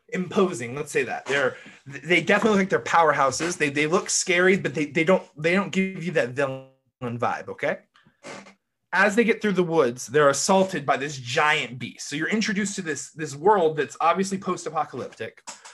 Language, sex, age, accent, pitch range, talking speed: English, male, 20-39, American, 140-190 Hz, 185 wpm